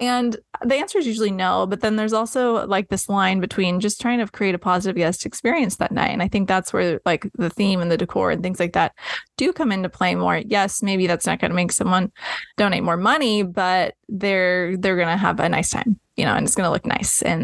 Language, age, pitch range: English, 20-39, 180-215 Hz